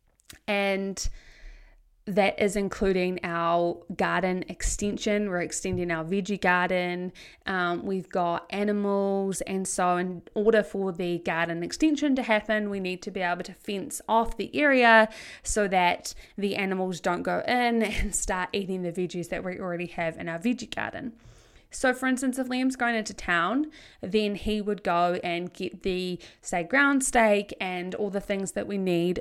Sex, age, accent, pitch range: female, 20-39, Australian, 180-230 Hz